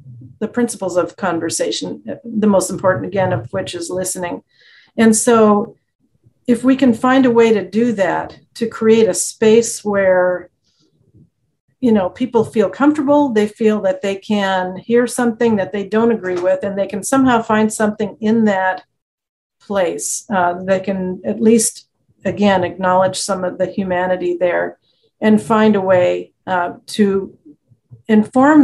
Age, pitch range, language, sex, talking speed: 50-69, 180-230 Hz, English, female, 155 wpm